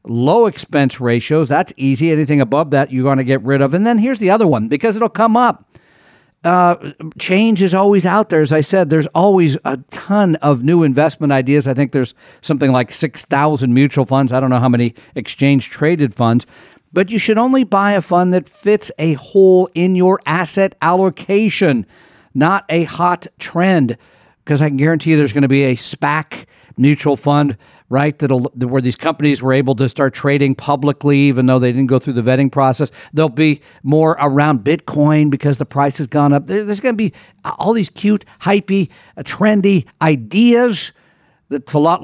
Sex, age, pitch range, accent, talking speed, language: male, 50-69, 140-190 Hz, American, 190 wpm, English